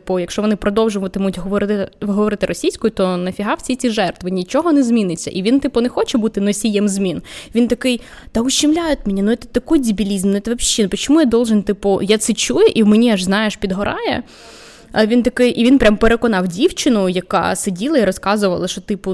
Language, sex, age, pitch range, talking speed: Ukrainian, female, 20-39, 190-230 Hz, 200 wpm